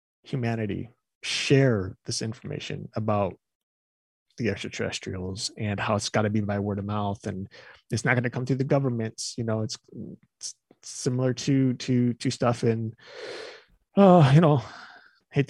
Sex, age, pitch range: male, 30-49, 110-135 Hz